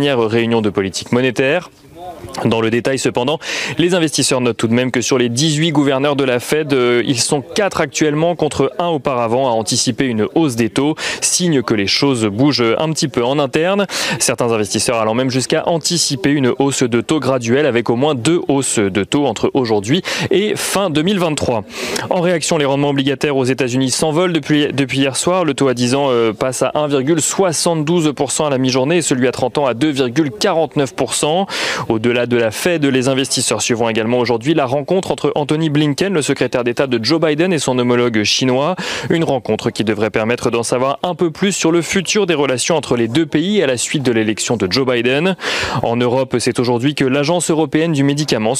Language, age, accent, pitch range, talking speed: French, 30-49, French, 120-155 Hz, 200 wpm